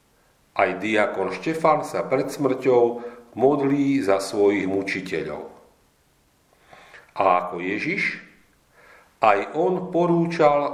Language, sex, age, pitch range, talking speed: Slovak, male, 50-69, 95-160 Hz, 90 wpm